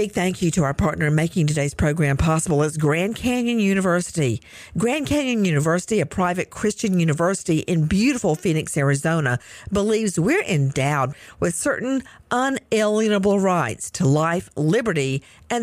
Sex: female